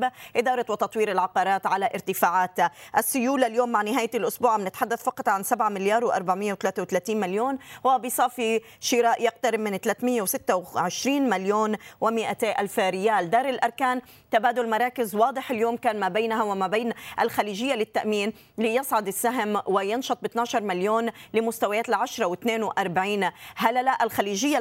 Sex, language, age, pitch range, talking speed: female, Arabic, 20-39, 200-240 Hz, 125 wpm